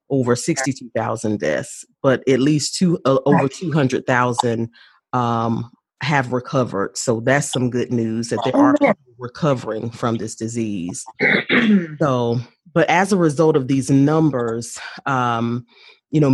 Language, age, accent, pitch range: English, 30-49, American, 120-145 Hz